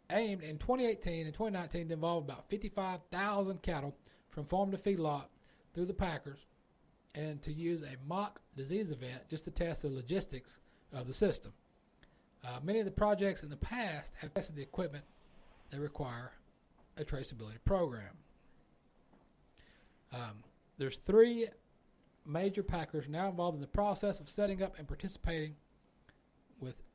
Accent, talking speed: American, 145 wpm